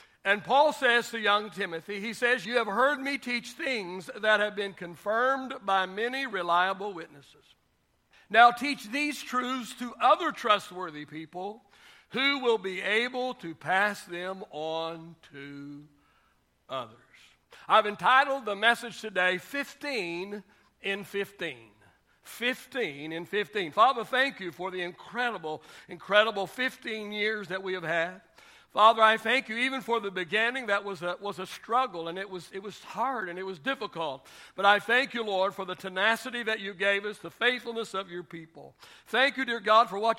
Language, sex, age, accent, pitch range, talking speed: English, male, 60-79, American, 180-240 Hz, 165 wpm